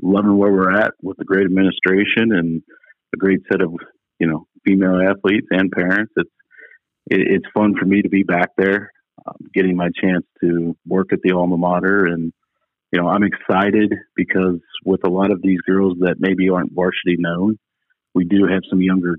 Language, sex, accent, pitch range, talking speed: English, male, American, 85-95 Hz, 190 wpm